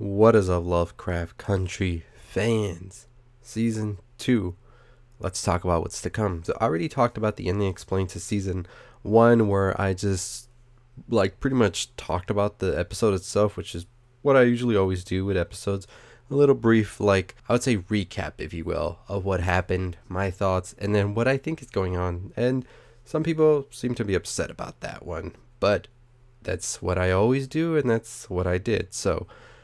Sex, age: male, 20-39